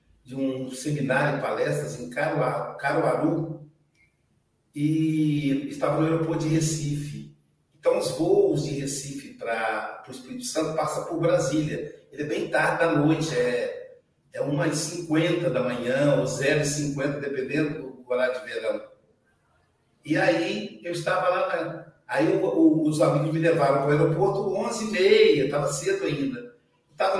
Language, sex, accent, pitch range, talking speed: Portuguese, male, Brazilian, 145-175 Hz, 135 wpm